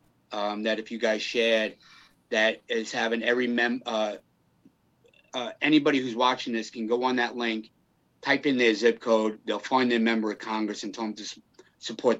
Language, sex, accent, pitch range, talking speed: English, male, American, 115-150 Hz, 190 wpm